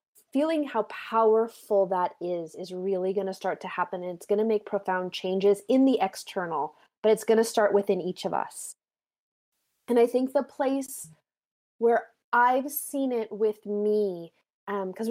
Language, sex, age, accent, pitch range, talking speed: English, female, 20-39, American, 205-255 Hz, 170 wpm